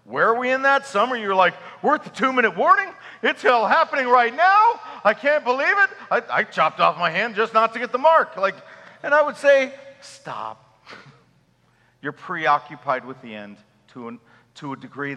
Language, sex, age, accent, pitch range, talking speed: English, male, 50-69, American, 120-190 Hz, 190 wpm